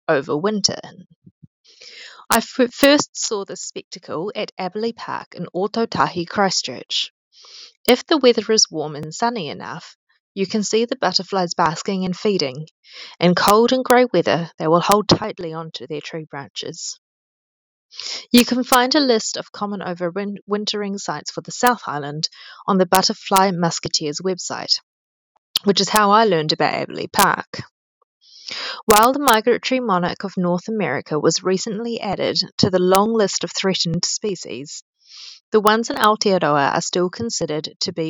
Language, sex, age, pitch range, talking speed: English, female, 20-39, 165-225 Hz, 150 wpm